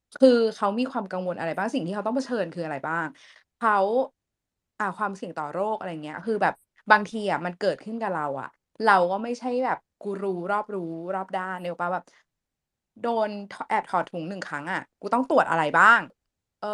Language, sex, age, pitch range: Thai, female, 20-39, 190-260 Hz